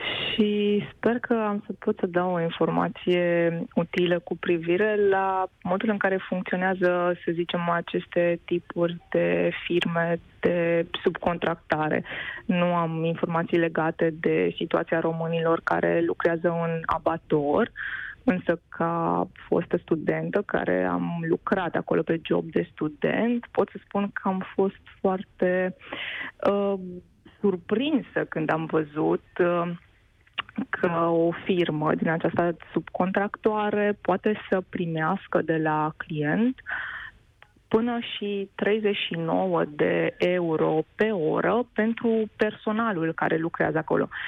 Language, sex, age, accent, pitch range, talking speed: Romanian, female, 20-39, native, 165-200 Hz, 115 wpm